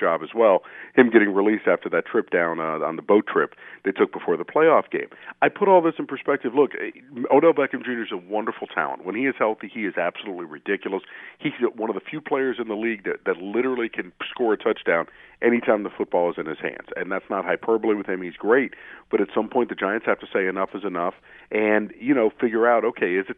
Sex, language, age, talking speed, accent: male, English, 50-69, 240 wpm, American